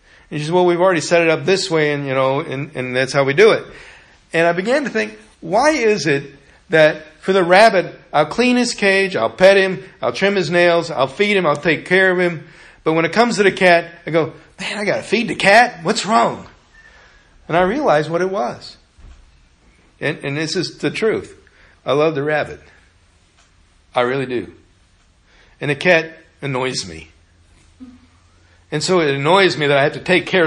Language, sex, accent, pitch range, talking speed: English, male, American, 130-180 Hz, 205 wpm